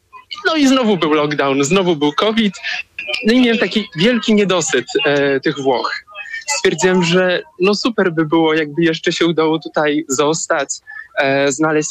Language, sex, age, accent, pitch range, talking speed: Polish, male, 20-39, native, 155-215 Hz, 155 wpm